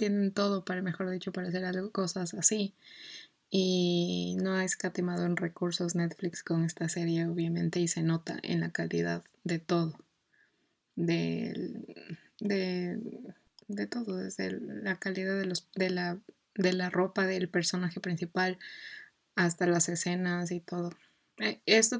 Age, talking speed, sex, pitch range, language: 20-39, 140 wpm, female, 170-190 Hz, Spanish